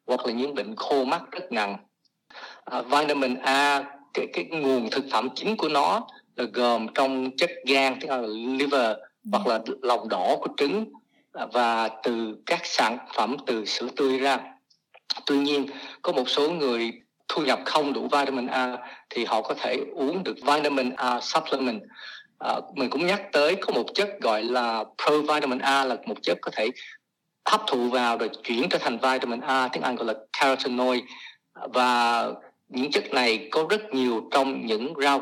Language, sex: Vietnamese, male